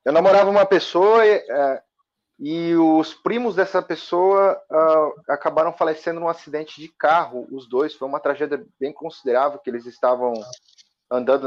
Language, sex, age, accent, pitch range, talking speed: Portuguese, male, 30-49, Brazilian, 125-175 Hz, 145 wpm